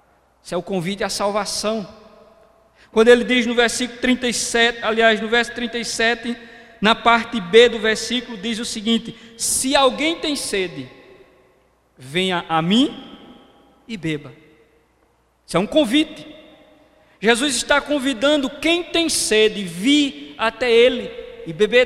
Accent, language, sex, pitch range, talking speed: Brazilian, Portuguese, male, 220-275 Hz, 130 wpm